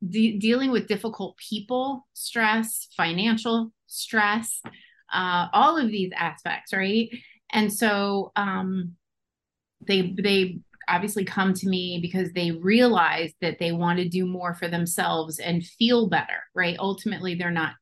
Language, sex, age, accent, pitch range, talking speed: English, female, 30-49, American, 175-220 Hz, 135 wpm